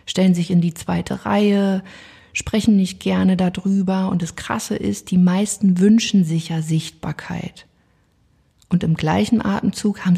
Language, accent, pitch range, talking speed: German, German, 175-215 Hz, 145 wpm